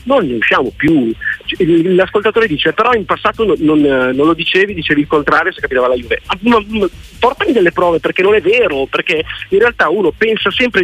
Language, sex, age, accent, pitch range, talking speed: Italian, male, 40-59, native, 145-230 Hz, 185 wpm